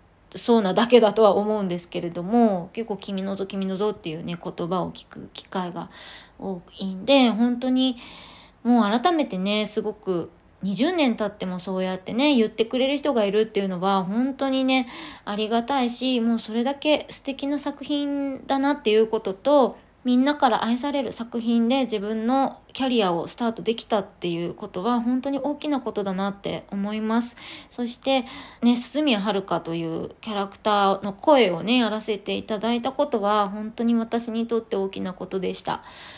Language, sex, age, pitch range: Japanese, female, 20-39, 195-260 Hz